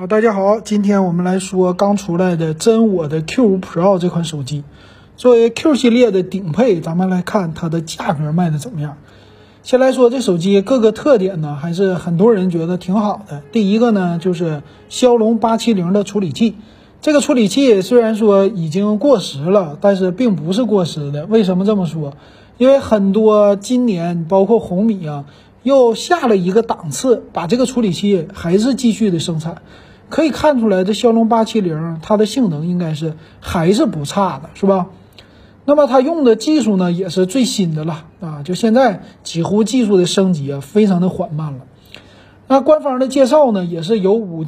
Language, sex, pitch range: Chinese, male, 175-235 Hz